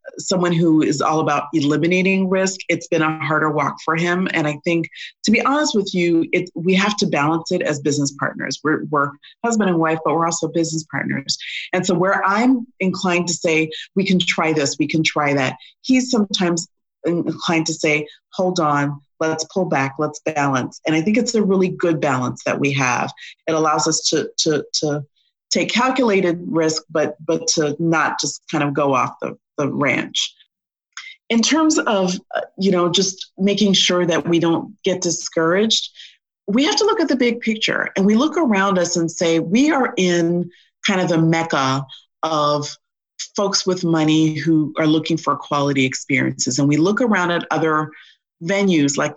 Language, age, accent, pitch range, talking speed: English, 40-59, American, 155-190 Hz, 185 wpm